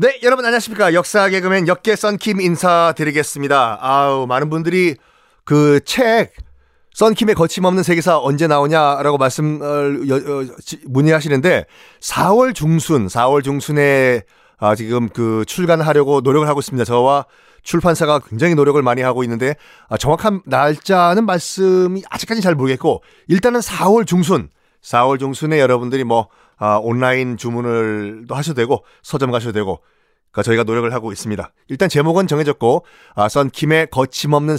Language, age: Korean, 30-49